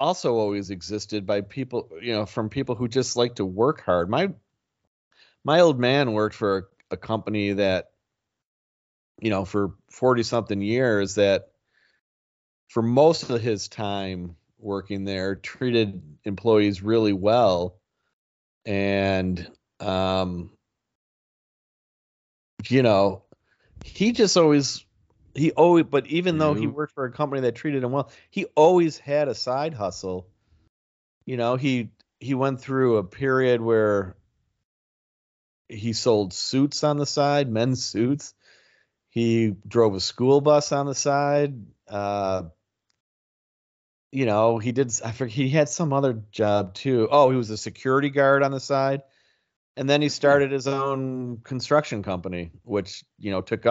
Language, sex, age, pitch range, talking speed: English, male, 40-59, 100-135 Hz, 145 wpm